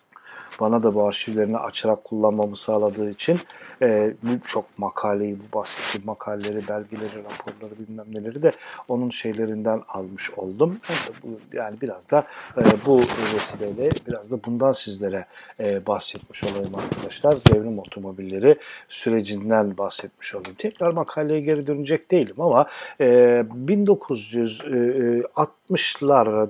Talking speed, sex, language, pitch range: 115 wpm, male, Turkish, 110-165 Hz